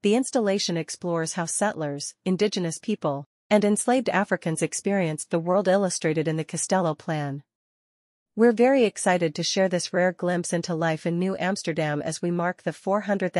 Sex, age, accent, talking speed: female, 40-59, American, 160 wpm